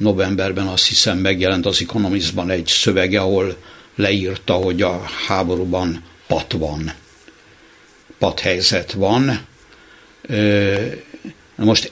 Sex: male